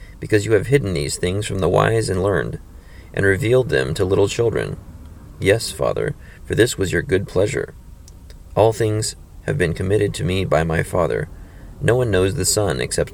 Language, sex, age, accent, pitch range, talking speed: English, male, 30-49, American, 85-105 Hz, 185 wpm